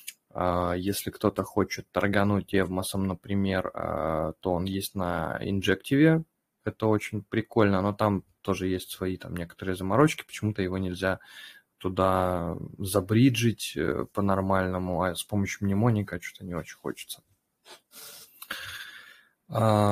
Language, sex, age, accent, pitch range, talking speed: Russian, male, 20-39, native, 95-115 Hz, 110 wpm